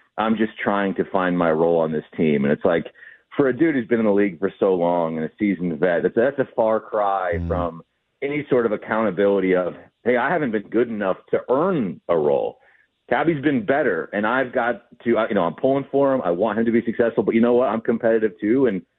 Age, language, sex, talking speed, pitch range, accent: 30-49, English, male, 235 wpm, 90-130 Hz, American